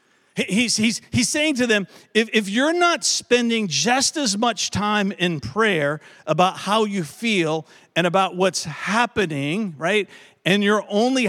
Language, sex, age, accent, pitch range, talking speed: English, male, 50-69, American, 165-215 Hz, 155 wpm